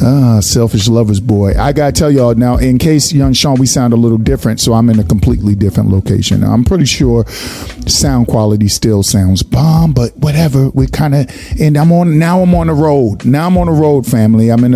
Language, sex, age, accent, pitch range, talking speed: English, male, 40-59, American, 105-130 Hz, 220 wpm